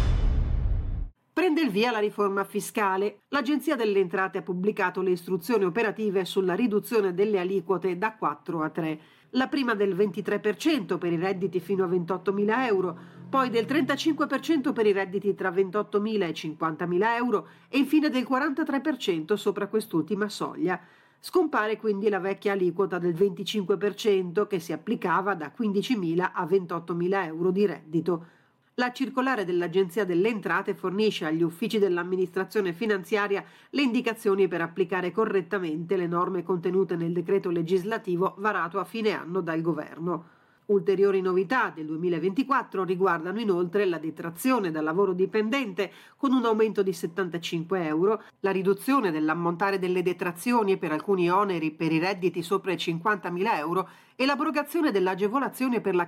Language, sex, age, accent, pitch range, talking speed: Italian, female, 40-59, native, 175-215 Hz, 140 wpm